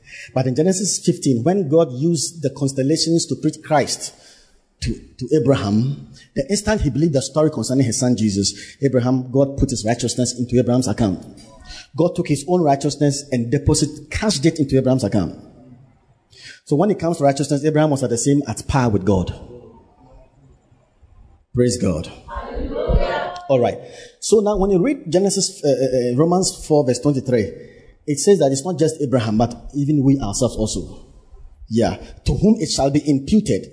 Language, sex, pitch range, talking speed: English, male, 120-160 Hz, 165 wpm